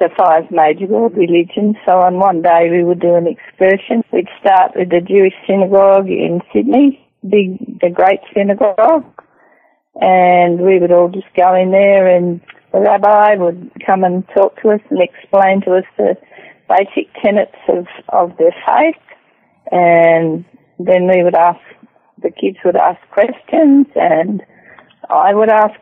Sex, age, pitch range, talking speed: female, 30-49, 180-220 Hz, 155 wpm